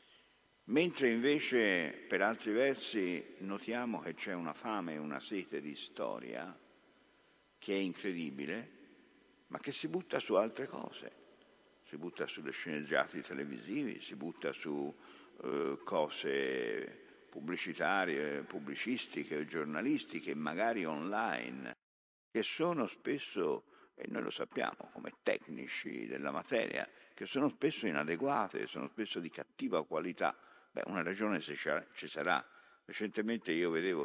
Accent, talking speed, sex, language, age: native, 120 wpm, male, Italian, 50-69